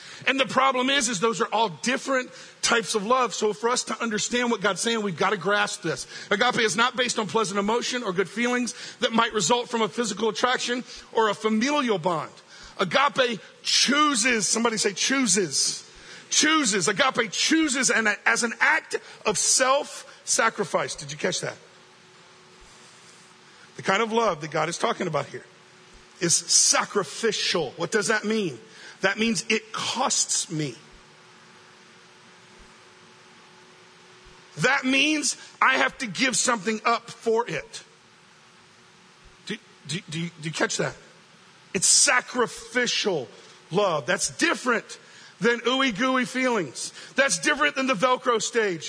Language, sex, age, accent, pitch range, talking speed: English, male, 50-69, American, 190-245 Hz, 145 wpm